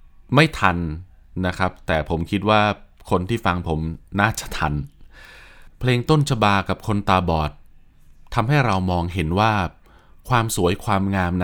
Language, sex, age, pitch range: Thai, male, 20-39, 85-105 Hz